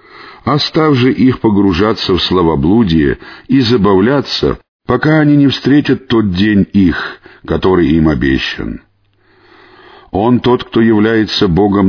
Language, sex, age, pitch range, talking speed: Russian, male, 50-69, 90-120 Hz, 115 wpm